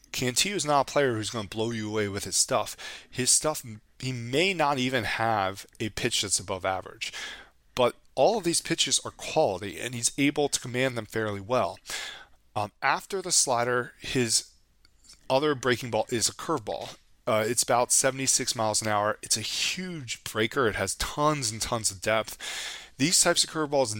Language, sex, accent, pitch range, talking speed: English, male, American, 105-135 Hz, 185 wpm